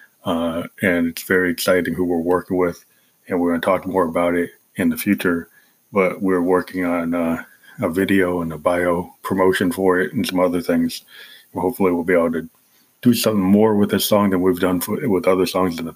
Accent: American